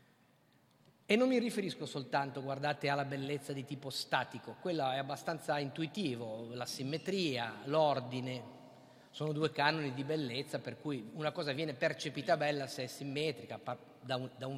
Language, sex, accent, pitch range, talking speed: Italian, male, native, 135-175 Hz, 150 wpm